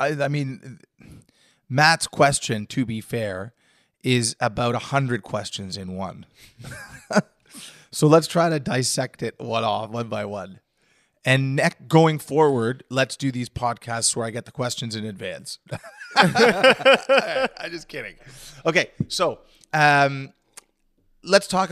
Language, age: English, 30-49